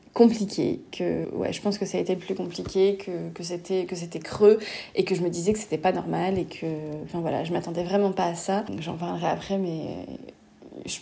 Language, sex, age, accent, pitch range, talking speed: French, female, 20-39, French, 175-215 Hz, 235 wpm